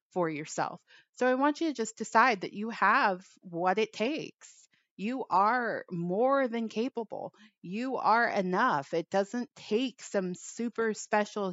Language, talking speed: English, 150 wpm